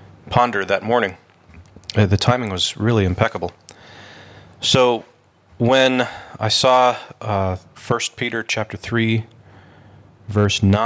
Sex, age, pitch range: male, 30-49, 95-115 Hz